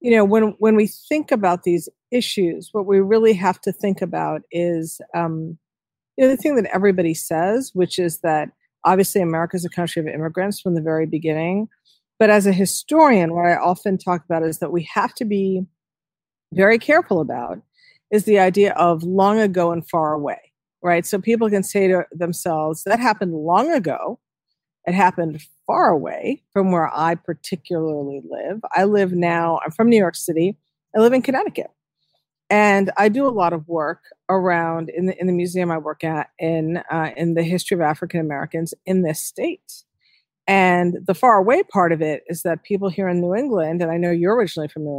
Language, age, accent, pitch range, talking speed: English, 50-69, American, 165-205 Hz, 195 wpm